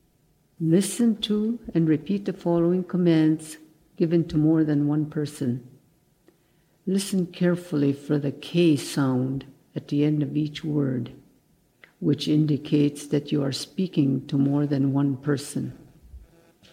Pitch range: 150-175 Hz